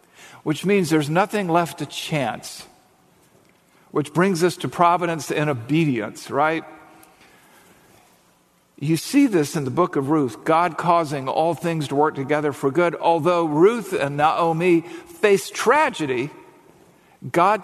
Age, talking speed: 50-69, 135 wpm